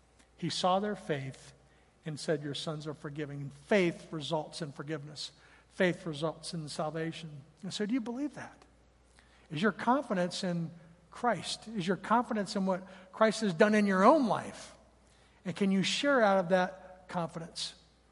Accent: American